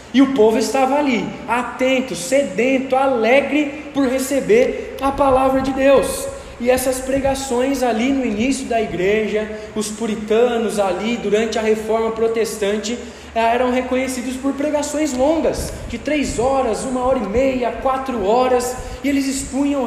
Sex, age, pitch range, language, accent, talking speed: male, 20-39, 240-280 Hz, Portuguese, Brazilian, 140 wpm